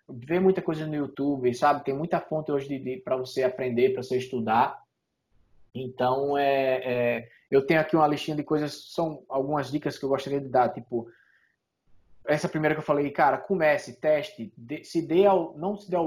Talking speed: 195 wpm